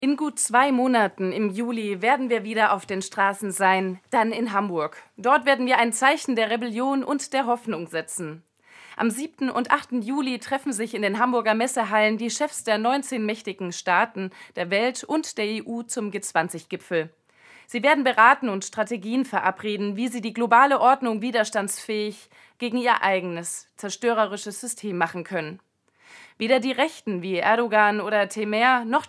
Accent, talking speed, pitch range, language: German, 160 wpm, 200-250 Hz, German